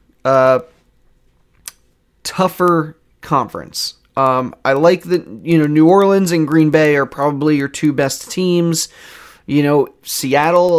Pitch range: 140-170 Hz